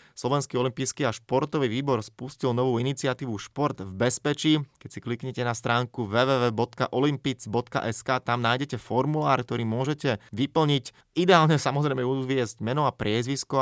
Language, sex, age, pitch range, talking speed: Slovak, male, 20-39, 110-130 Hz, 130 wpm